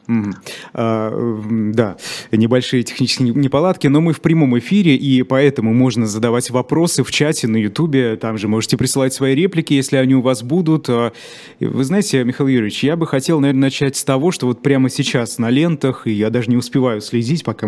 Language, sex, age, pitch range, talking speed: Russian, male, 20-39, 120-145 Hz, 180 wpm